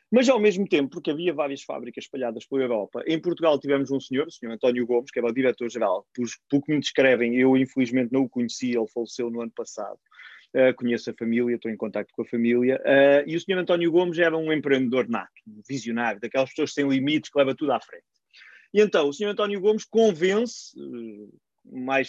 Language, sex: Portuguese, male